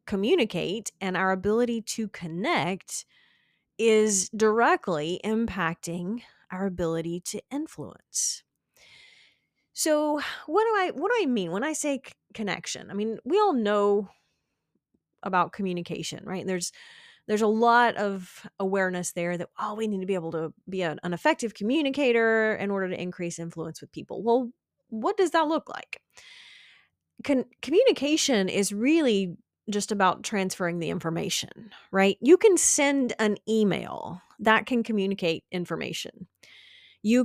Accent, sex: American, female